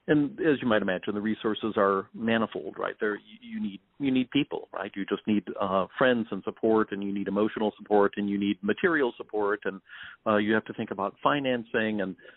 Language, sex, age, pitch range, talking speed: English, male, 50-69, 100-115 Hz, 210 wpm